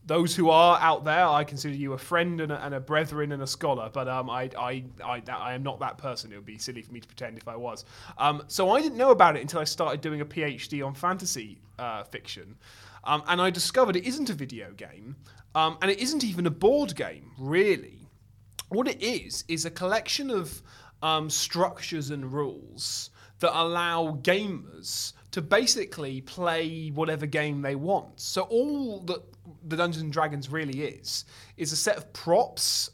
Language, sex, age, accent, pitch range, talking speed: English, male, 20-39, British, 130-170 Hz, 195 wpm